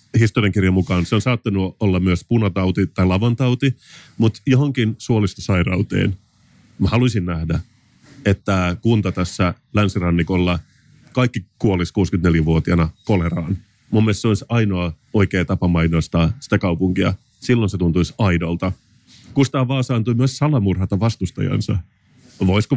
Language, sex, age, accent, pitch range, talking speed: Finnish, male, 30-49, native, 95-120 Hz, 115 wpm